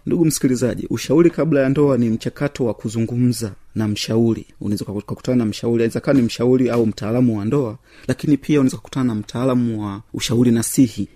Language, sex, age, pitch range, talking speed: Swahili, male, 30-49, 110-130 Hz, 165 wpm